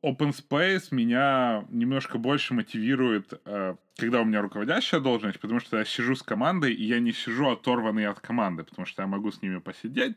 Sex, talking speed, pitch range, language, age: male, 185 wpm, 110-150 Hz, Ukrainian, 20-39